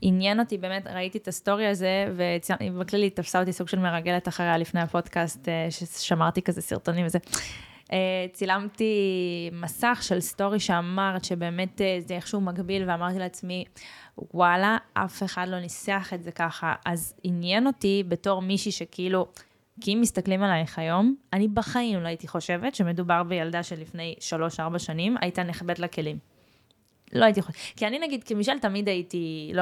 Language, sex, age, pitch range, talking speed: Hebrew, female, 20-39, 175-200 Hz, 135 wpm